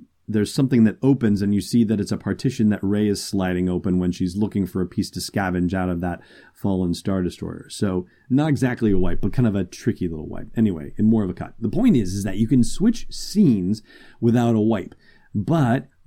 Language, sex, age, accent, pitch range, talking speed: English, male, 30-49, American, 95-115 Hz, 230 wpm